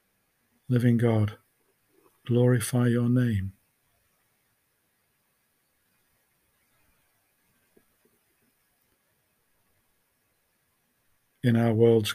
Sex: male